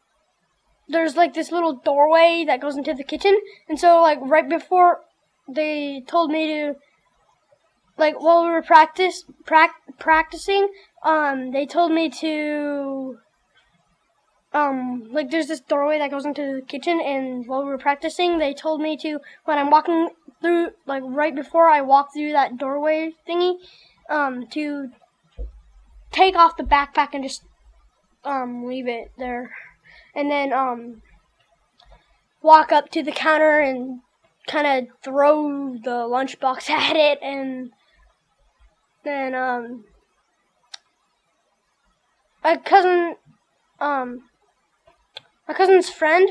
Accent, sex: American, female